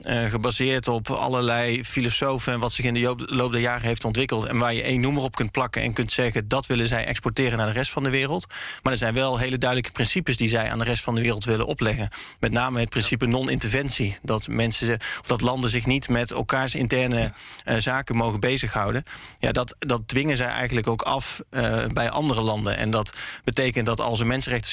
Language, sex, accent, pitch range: Dutch, male, Dutch, 115-130 Hz